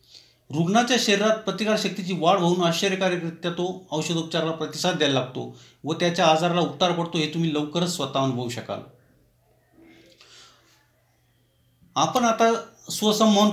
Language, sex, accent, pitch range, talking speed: Marathi, male, native, 155-200 Hz, 115 wpm